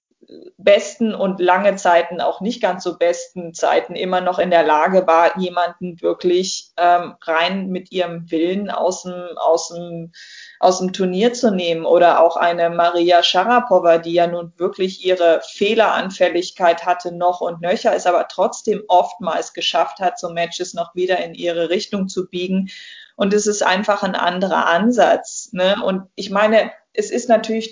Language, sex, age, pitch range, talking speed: German, female, 20-39, 175-195 Hz, 165 wpm